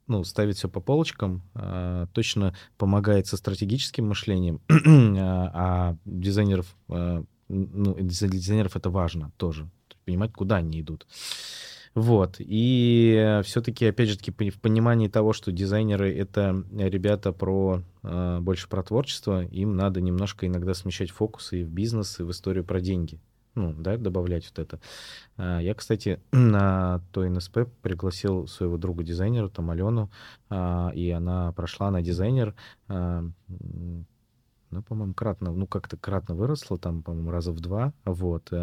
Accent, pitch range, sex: native, 90-110 Hz, male